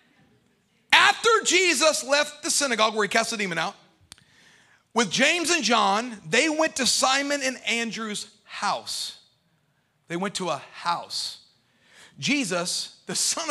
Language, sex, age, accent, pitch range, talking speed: English, male, 40-59, American, 190-270 Hz, 135 wpm